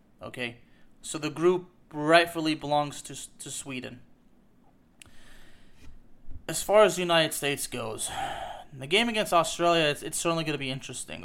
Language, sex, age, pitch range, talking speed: English, male, 20-39, 140-170 Hz, 140 wpm